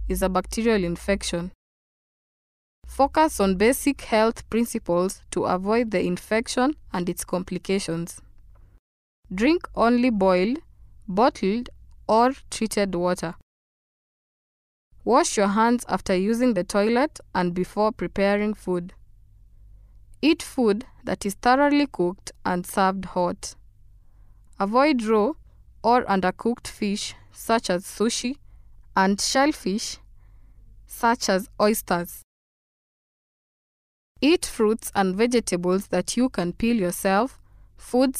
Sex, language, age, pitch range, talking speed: female, English, 20-39, 180-230 Hz, 105 wpm